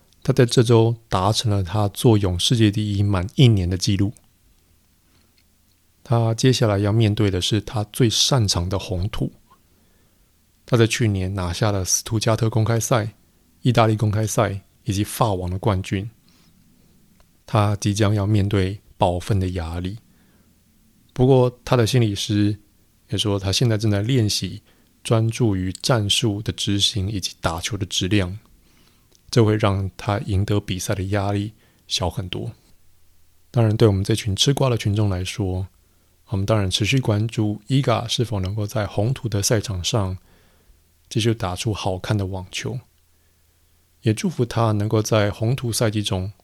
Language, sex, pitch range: Chinese, male, 90-110 Hz